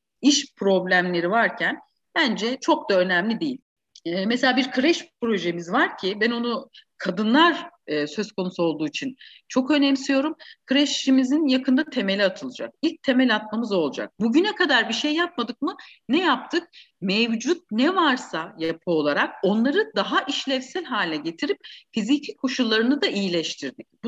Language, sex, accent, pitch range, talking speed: Turkish, female, native, 215-315 Hz, 135 wpm